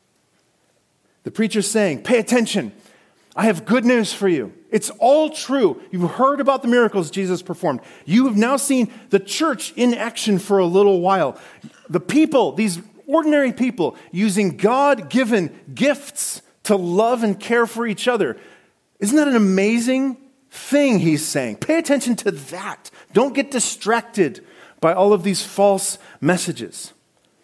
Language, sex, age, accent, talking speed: English, male, 40-59, American, 150 wpm